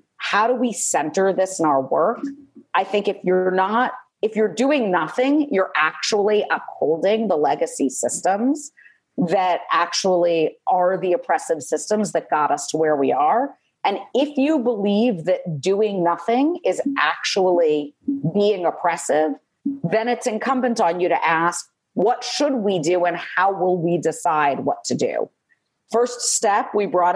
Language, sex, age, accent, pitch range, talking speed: English, female, 40-59, American, 175-235 Hz, 155 wpm